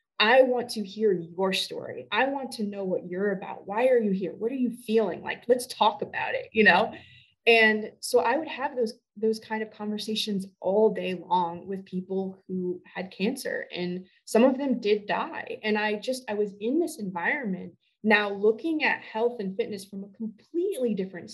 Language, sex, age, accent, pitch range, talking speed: English, female, 20-39, American, 200-260 Hz, 195 wpm